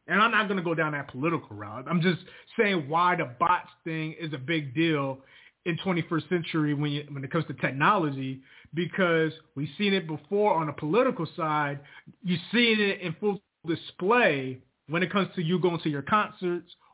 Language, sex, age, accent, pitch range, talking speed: English, male, 30-49, American, 155-200 Hz, 195 wpm